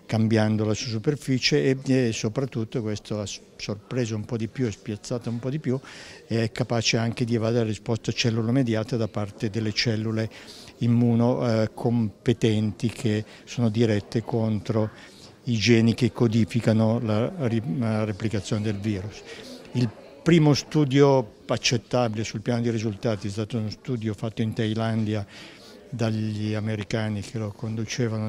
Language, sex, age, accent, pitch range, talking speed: Italian, male, 60-79, native, 110-125 Hz, 140 wpm